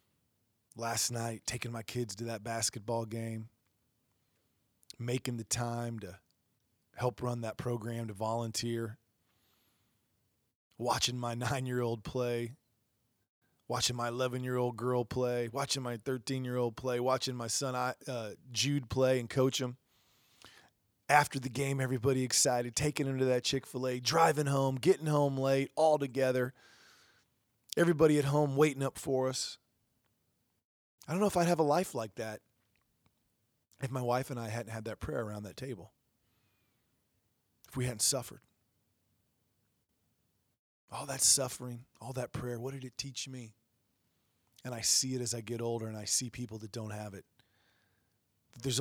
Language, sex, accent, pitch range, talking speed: English, male, American, 115-130 Hz, 145 wpm